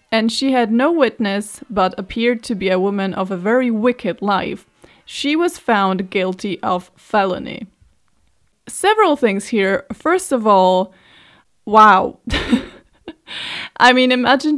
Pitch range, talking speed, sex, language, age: 195-260 Hz, 130 wpm, female, English, 20-39